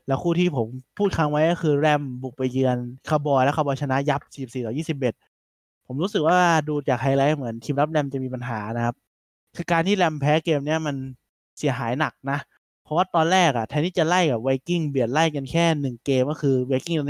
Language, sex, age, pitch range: Thai, male, 20-39, 125-160 Hz